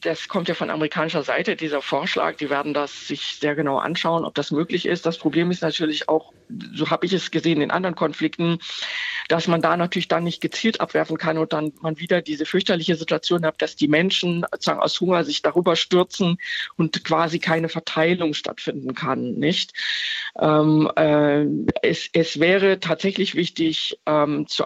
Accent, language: German, German